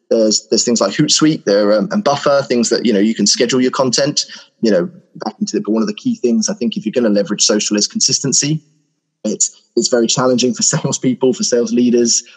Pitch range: 110-135 Hz